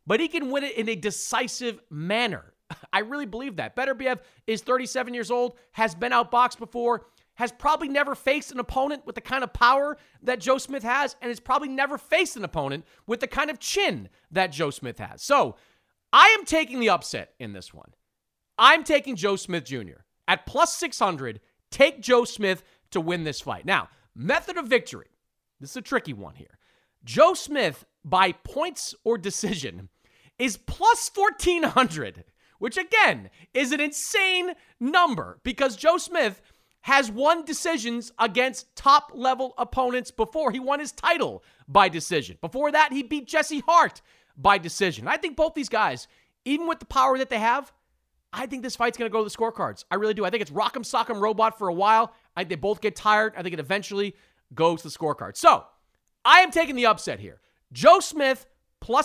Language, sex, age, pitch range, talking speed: English, male, 40-59, 200-285 Hz, 185 wpm